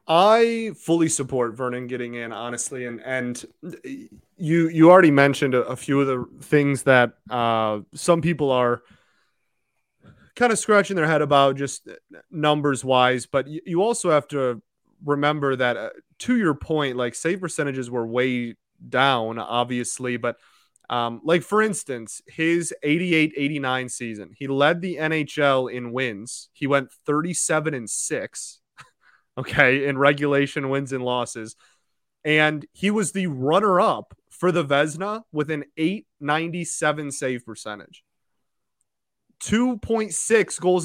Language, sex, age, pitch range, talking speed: English, male, 20-39, 125-165 Hz, 140 wpm